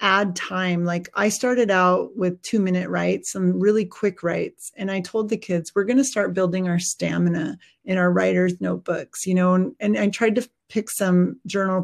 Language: English